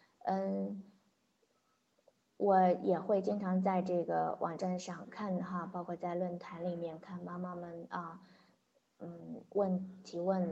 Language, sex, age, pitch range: Chinese, female, 20-39, 175-195 Hz